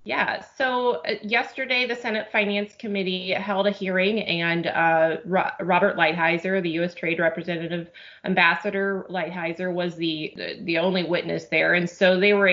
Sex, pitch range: female, 170-205 Hz